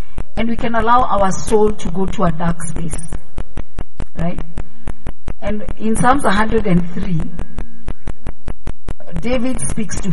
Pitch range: 170-225 Hz